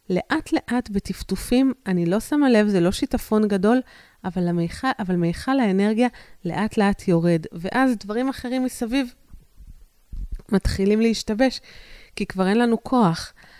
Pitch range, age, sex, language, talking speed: 175-225 Hz, 30-49, female, Hebrew, 115 wpm